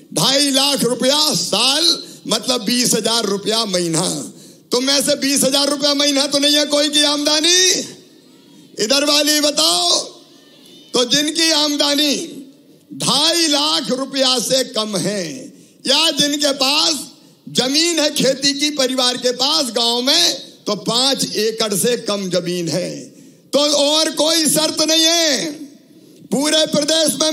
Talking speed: 135 wpm